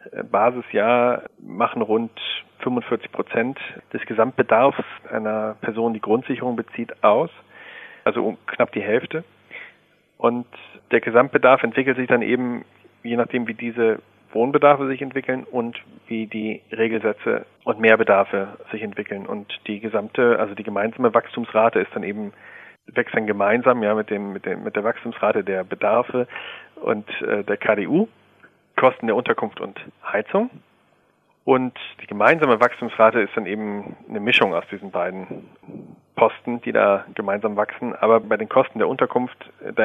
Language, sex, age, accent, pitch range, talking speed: German, male, 40-59, German, 105-125 Hz, 145 wpm